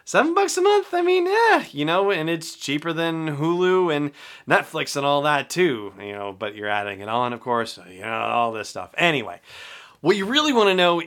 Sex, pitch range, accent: male, 115-155 Hz, American